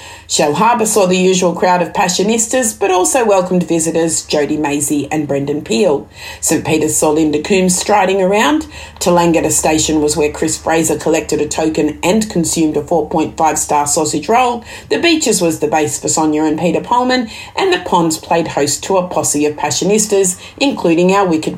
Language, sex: English, female